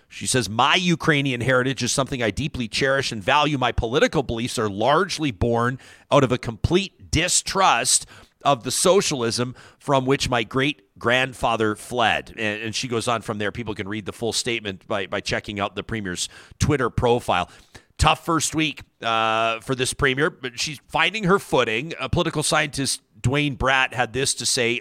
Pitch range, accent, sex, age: 115-145 Hz, American, male, 40-59